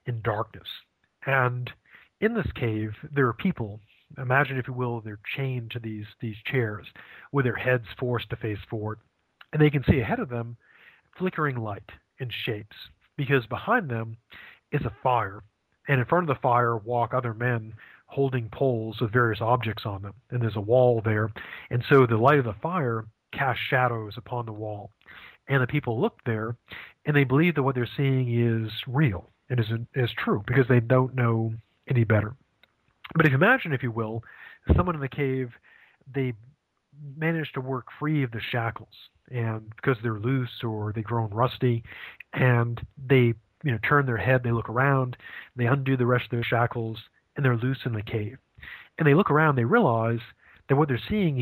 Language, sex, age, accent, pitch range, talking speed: English, male, 40-59, American, 115-135 Hz, 190 wpm